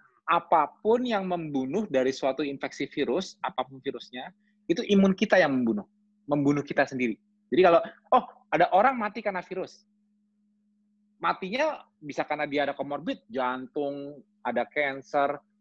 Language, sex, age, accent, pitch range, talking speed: Indonesian, male, 30-49, native, 145-210 Hz, 130 wpm